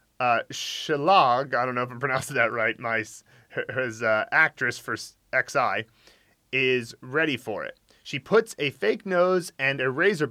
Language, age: English, 30-49